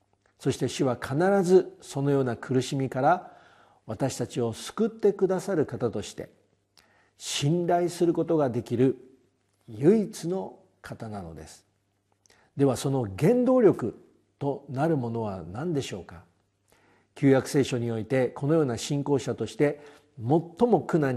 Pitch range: 110-165 Hz